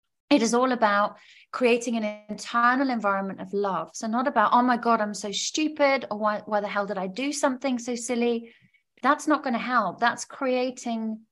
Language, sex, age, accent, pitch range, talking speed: English, female, 30-49, British, 200-250 Hz, 195 wpm